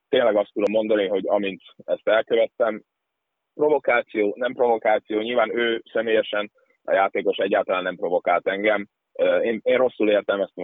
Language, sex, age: Hungarian, male, 30-49